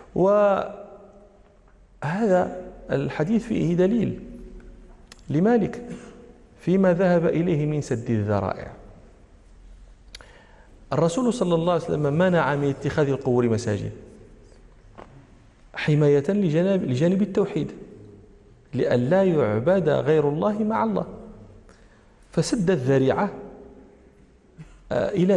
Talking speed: 80 wpm